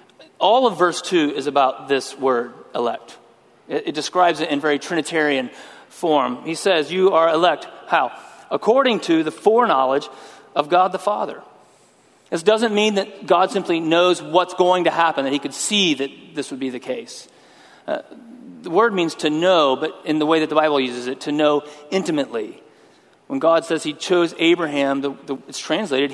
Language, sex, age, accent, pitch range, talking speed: English, male, 40-59, American, 135-180 Hz, 180 wpm